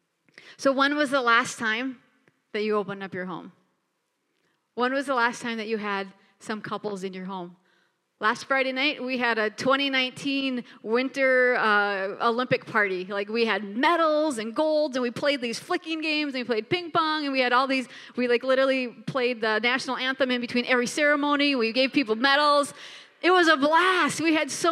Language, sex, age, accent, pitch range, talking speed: English, female, 30-49, American, 210-275 Hz, 195 wpm